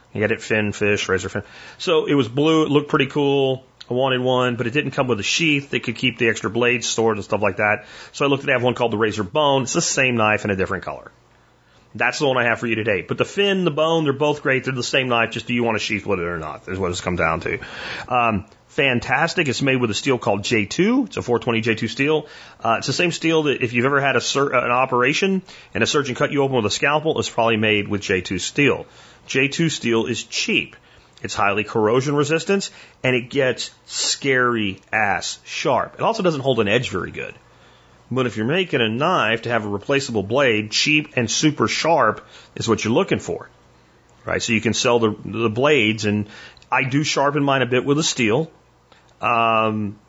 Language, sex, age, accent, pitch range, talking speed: English, male, 30-49, American, 110-140 Hz, 235 wpm